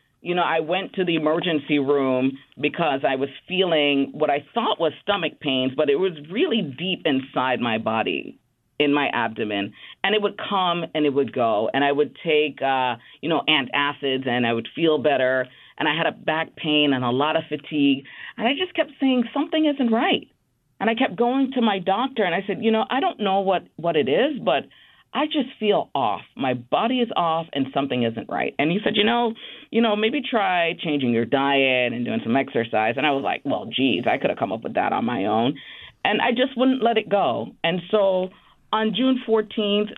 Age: 40-59